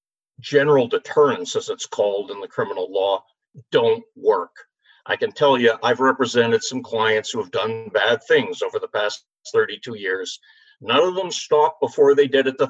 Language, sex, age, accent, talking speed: English, male, 50-69, American, 180 wpm